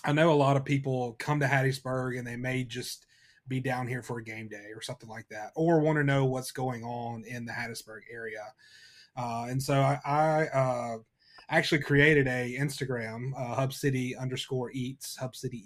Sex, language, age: male, English, 30-49